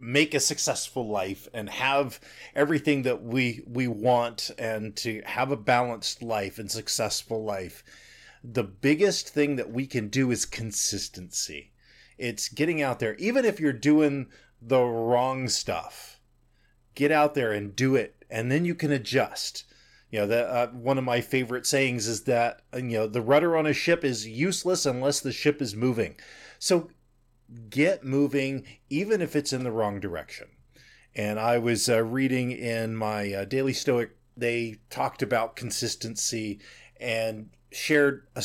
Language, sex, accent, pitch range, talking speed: English, male, American, 115-140 Hz, 160 wpm